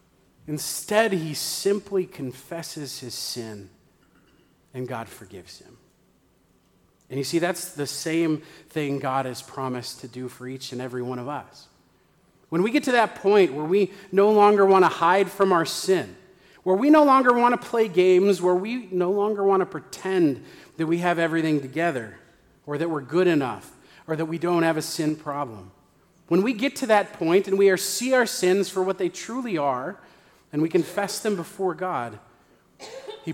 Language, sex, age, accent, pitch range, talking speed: English, male, 40-59, American, 145-190 Hz, 180 wpm